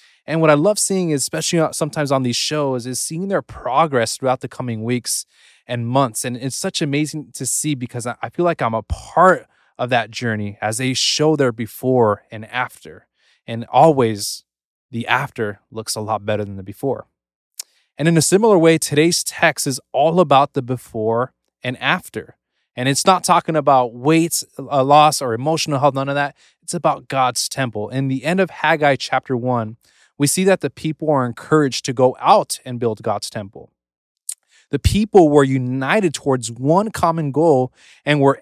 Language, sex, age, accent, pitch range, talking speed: English, male, 20-39, American, 115-155 Hz, 180 wpm